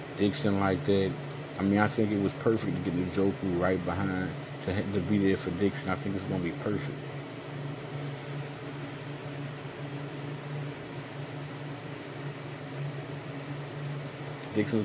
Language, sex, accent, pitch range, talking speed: English, male, American, 100-145 Hz, 115 wpm